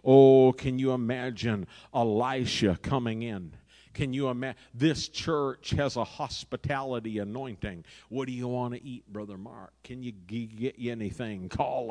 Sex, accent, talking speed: male, American, 150 wpm